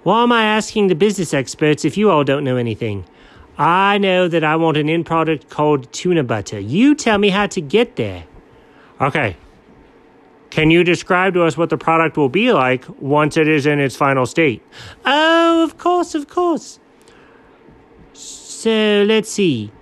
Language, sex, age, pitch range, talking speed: English, male, 40-59, 150-210 Hz, 175 wpm